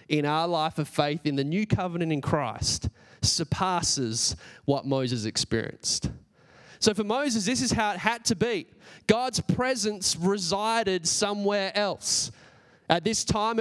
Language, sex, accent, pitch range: English, male, Australian, 175-220 Hz